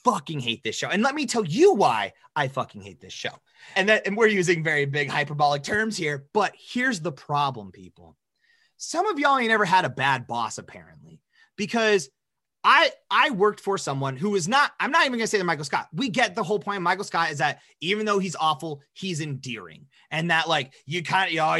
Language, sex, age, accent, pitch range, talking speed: English, male, 30-49, American, 150-230 Hz, 230 wpm